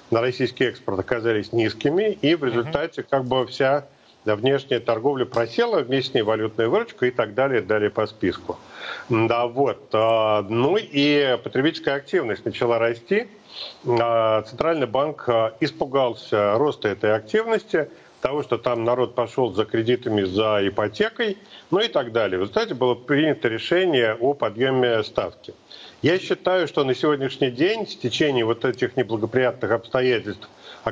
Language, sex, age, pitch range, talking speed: Russian, male, 40-59, 115-140 Hz, 140 wpm